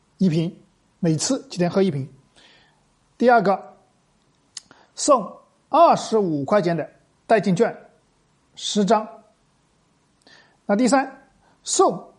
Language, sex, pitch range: Chinese, male, 160-230 Hz